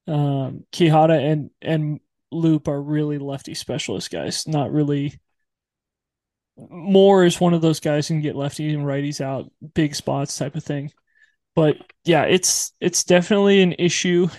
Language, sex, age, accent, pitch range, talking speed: English, male, 20-39, American, 150-175 Hz, 150 wpm